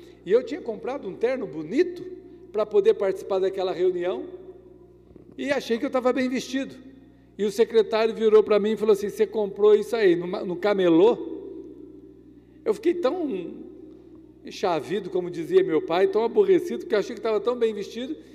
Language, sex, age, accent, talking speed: Portuguese, male, 50-69, Brazilian, 175 wpm